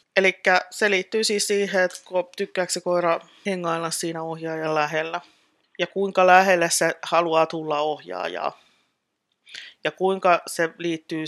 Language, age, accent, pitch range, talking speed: Finnish, 30-49, native, 160-180 Hz, 130 wpm